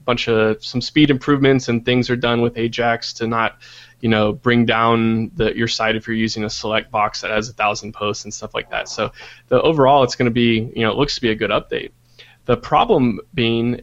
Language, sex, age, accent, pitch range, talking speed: English, male, 20-39, American, 110-120 Hz, 235 wpm